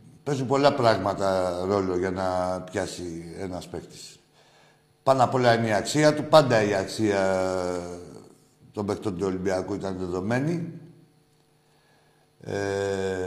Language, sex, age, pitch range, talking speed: Greek, male, 60-79, 90-150 Hz, 120 wpm